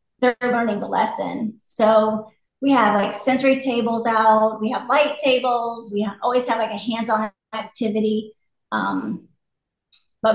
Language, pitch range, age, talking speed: English, 215-245 Hz, 30-49, 140 wpm